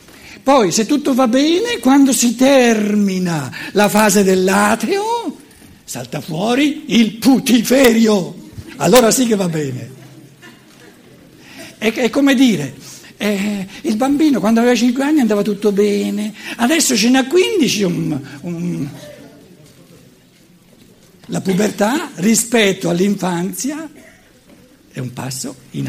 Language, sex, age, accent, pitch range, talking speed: Italian, male, 60-79, native, 180-245 Hz, 110 wpm